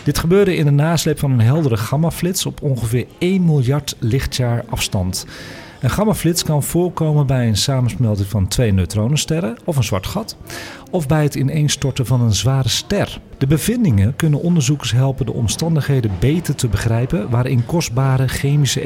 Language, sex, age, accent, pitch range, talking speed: Dutch, male, 40-59, Dutch, 115-160 Hz, 160 wpm